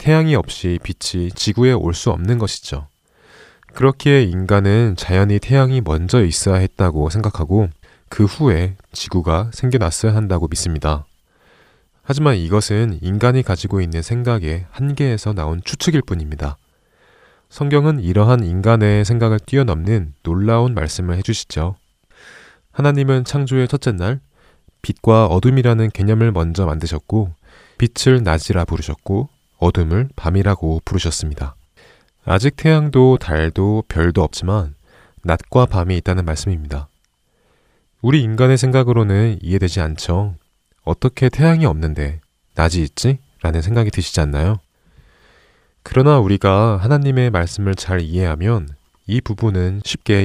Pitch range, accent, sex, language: 85-120 Hz, native, male, Korean